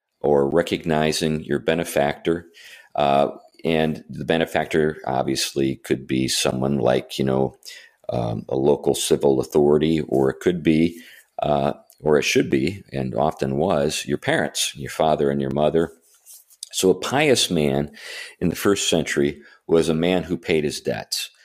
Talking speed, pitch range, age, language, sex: 150 wpm, 65-80 Hz, 40-59, English, male